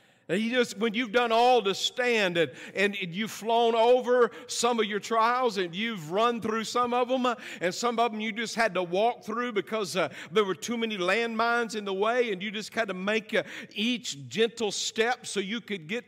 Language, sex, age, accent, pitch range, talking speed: English, male, 50-69, American, 155-225 Hz, 220 wpm